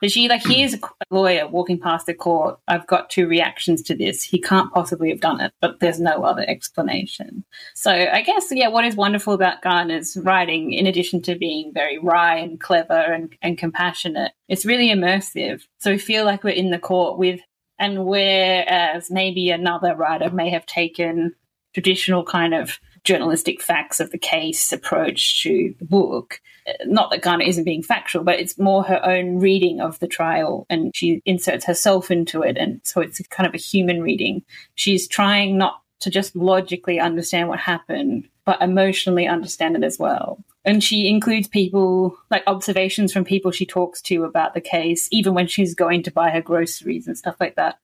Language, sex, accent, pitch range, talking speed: English, female, Australian, 175-200 Hz, 185 wpm